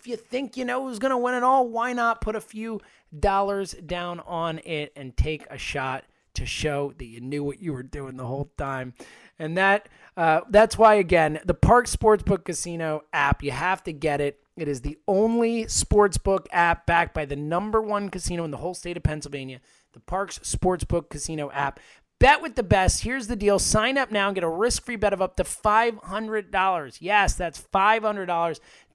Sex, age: male, 30-49